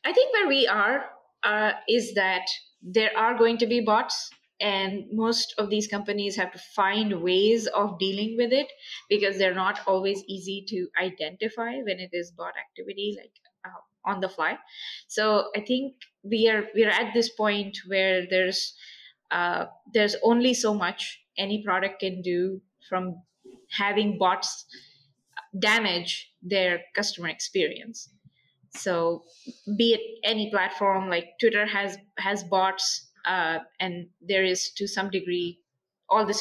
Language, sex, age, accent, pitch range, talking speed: English, female, 20-39, Indian, 180-220 Hz, 150 wpm